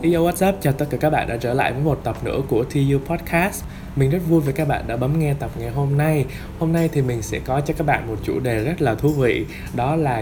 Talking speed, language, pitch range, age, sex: 280 wpm, Vietnamese, 115-150 Hz, 20-39, male